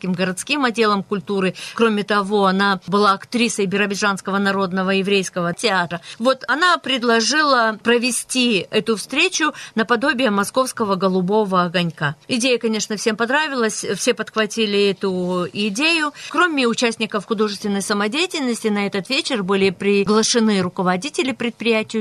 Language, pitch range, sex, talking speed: Russian, 195-235 Hz, female, 110 wpm